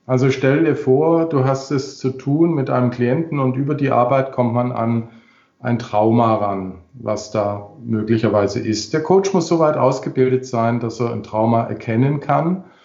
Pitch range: 115-140 Hz